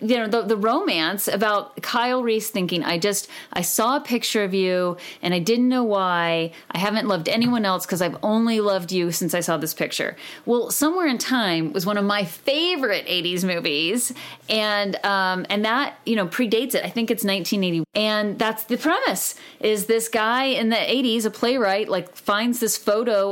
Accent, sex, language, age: American, female, English, 30-49